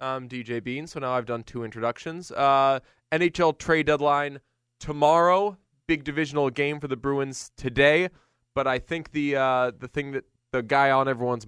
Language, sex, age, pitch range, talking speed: English, male, 20-39, 115-150 Hz, 175 wpm